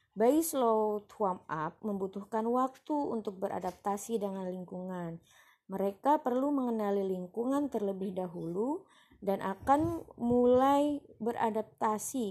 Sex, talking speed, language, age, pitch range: female, 95 wpm, Indonesian, 20-39, 185-240 Hz